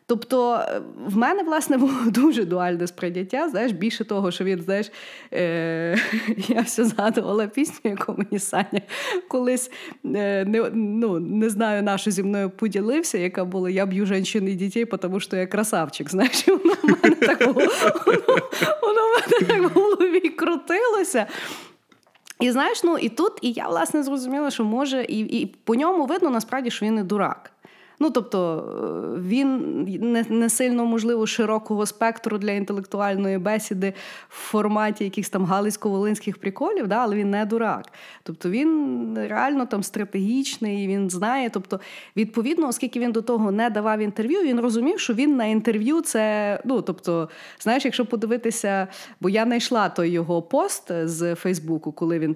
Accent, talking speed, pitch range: native, 155 wpm, 190-255 Hz